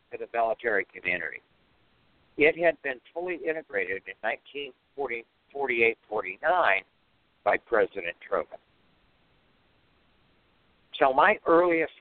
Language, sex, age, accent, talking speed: English, male, 60-79, American, 80 wpm